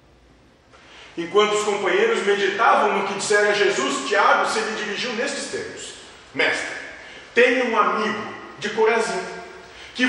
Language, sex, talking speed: Portuguese, male, 130 wpm